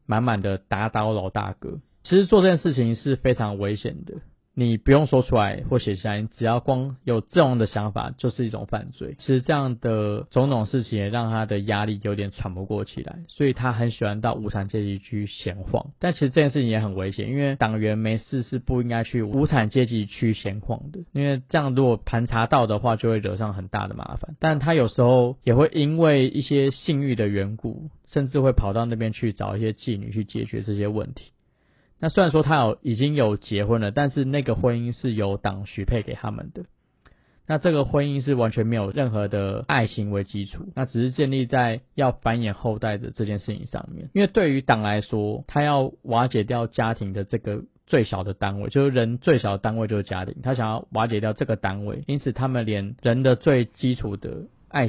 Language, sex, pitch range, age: Chinese, male, 105-135 Hz, 20-39